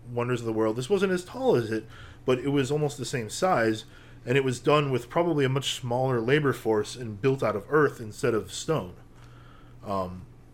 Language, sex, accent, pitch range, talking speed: English, male, American, 115-145 Hz, 210 wpm